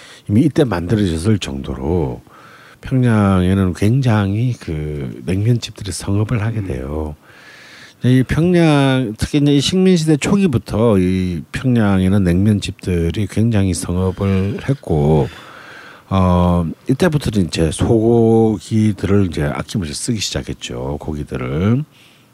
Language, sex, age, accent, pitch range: Korean, male, 50-69, native, 85-120 Hz